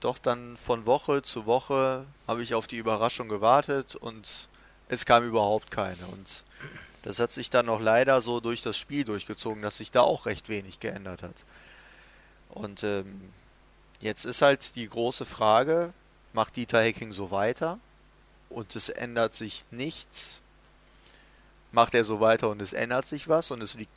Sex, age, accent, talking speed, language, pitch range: male, 30-49, German, 170 wpm, German, 110-130 Hz